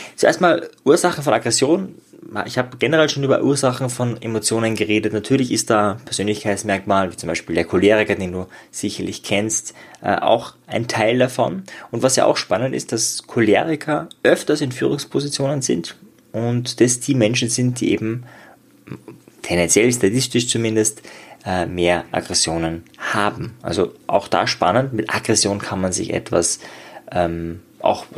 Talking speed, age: 145 wpm, 20-39